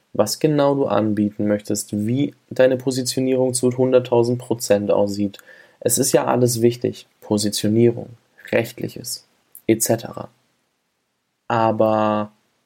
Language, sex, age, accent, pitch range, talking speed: German, male, 20-39, German, 110-125 Hz, 95 wpm